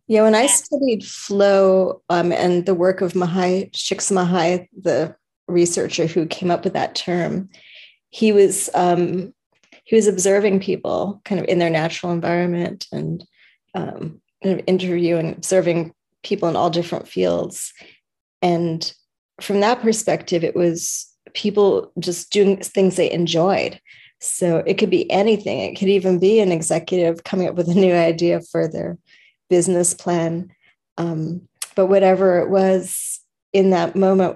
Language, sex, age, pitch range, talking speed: English, female, 30-49, 170-195 Hz, 145 wpm